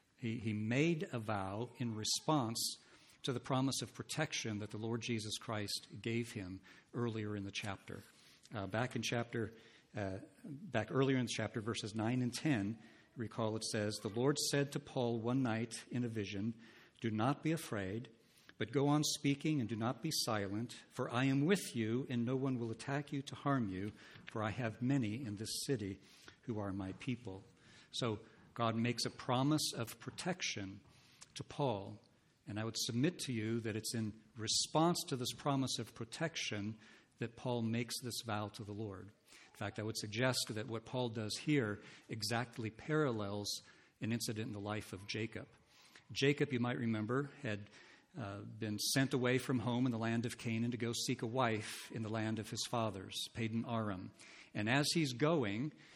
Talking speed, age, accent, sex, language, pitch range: 185 wpm, 60-79, American, male, English, 110-130 Hz